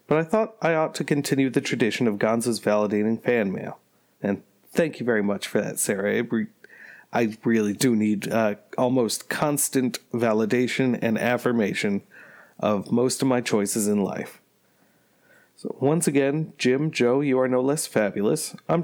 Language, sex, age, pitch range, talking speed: English, male, 30-49, 110-145 Hz, 160 wpm